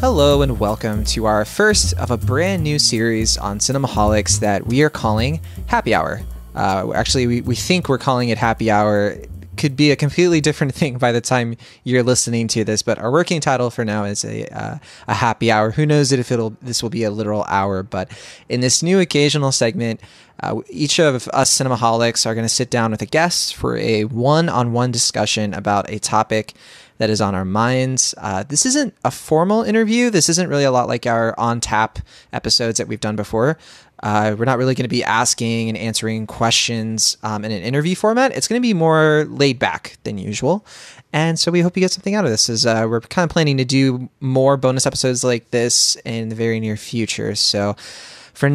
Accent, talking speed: American, 210 wpm